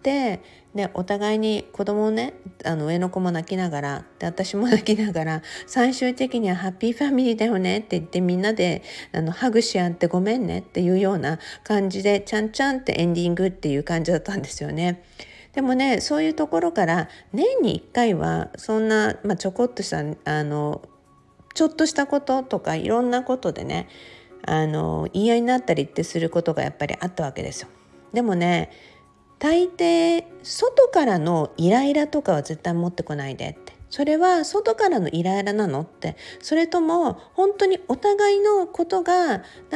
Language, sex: Japanese, female